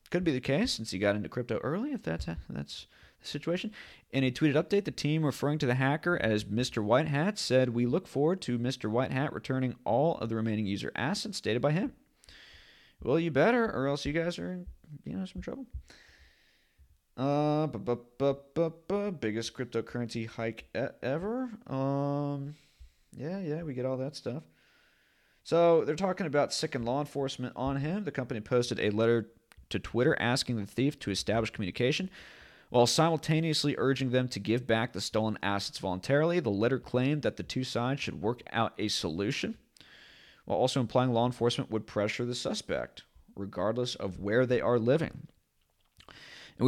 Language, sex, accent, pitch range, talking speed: English, male, American, 105-145 Hz, 170 wpm